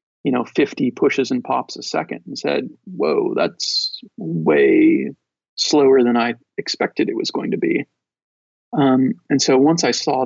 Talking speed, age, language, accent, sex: 165 wpm, 40-59, English, American, male